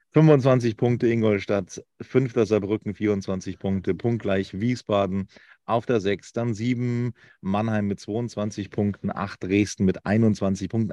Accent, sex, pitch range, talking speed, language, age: German, male, 95-115 Hz, 130 wpm, German, 40-59